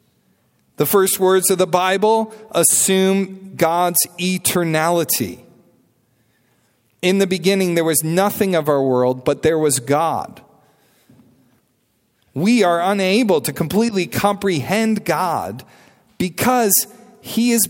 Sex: male